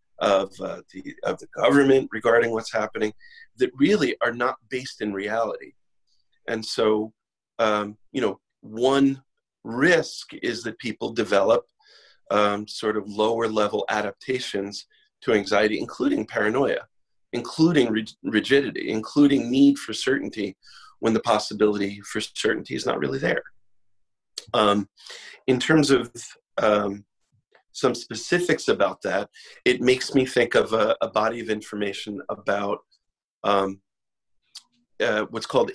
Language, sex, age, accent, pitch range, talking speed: English, male, 40-59, American, 105-130 Hz, 130 wpm